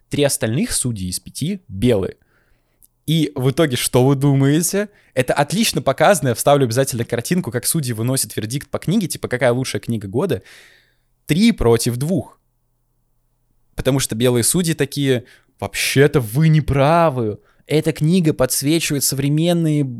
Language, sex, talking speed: Russian, male, 140 wpm